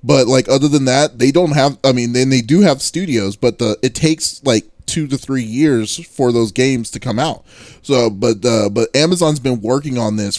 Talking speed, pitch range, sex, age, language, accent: 225 wpm, 110-130 Hz, male, 20-39, English, American